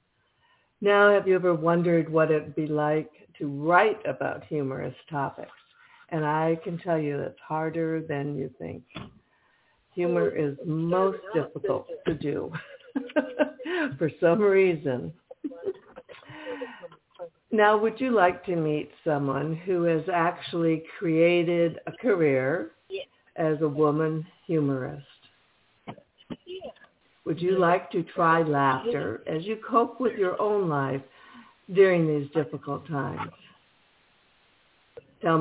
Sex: female